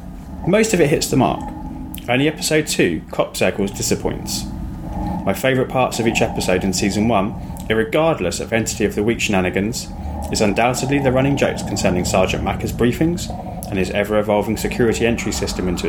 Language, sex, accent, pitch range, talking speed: English, male, British, 95-140 Hz, 165 wpm